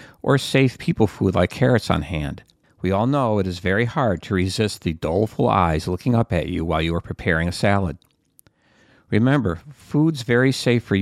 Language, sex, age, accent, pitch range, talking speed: English, male, 50-69, American, 95-130 Hz, 190 wpm